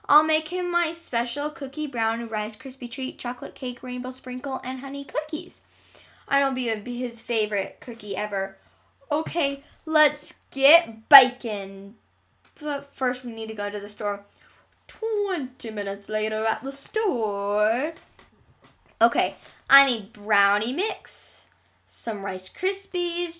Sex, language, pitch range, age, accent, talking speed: female, English, 225-320 Hz, 10-29, American, 135 wpm